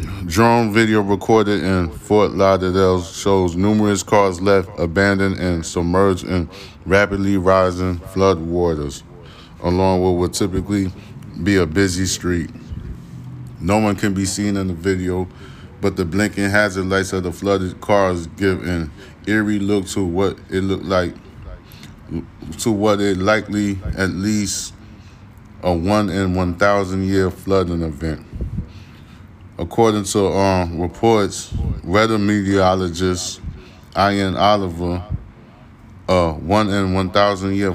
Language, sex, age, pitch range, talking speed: English, male, 20-39, 90-100 Hz, 115 wpm